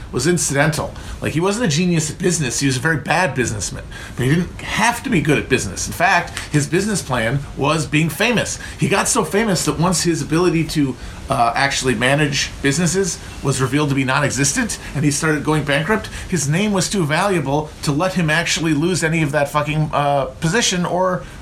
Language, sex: English, male